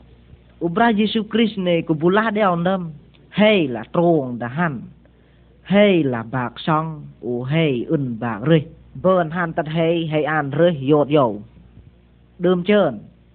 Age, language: 20-39, Vietnamese